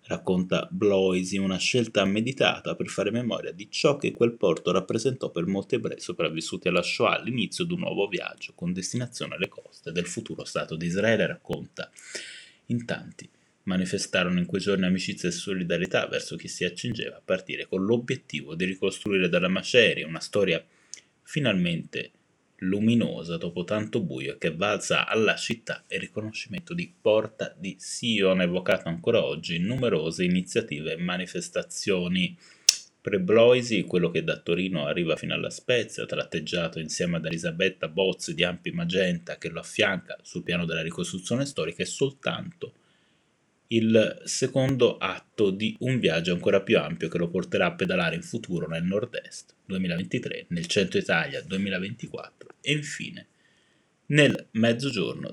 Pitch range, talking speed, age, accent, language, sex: 90-135 Hz, 145 wpm, 30-49, native, Italian, male